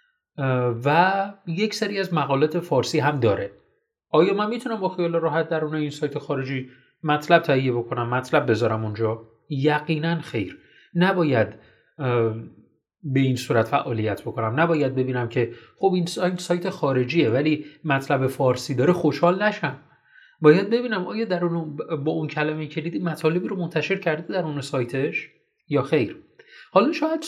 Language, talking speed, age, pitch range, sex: Persian, 140 wpm, 30-49, 125-175 Hz, male